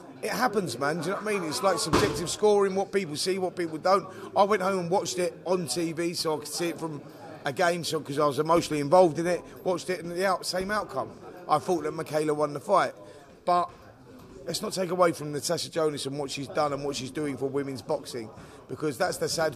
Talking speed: 240 wpm